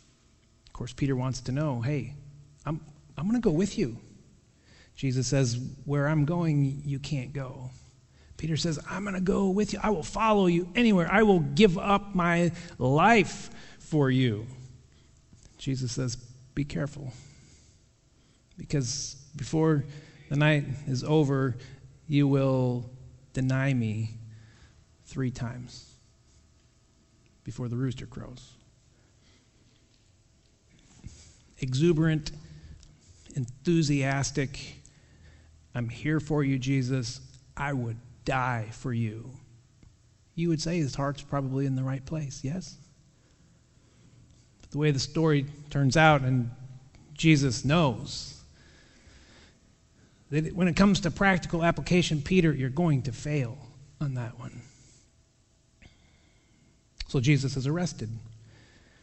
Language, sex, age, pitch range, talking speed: English, male, 30-49, 125-155 Hz, 115 wpm